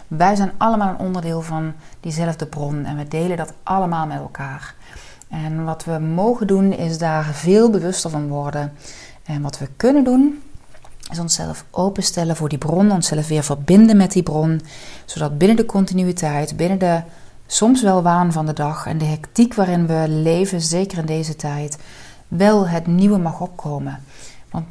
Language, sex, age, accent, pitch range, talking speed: Dutch, female, 40-59, Dutch, 150-190 Hz, 170 wpm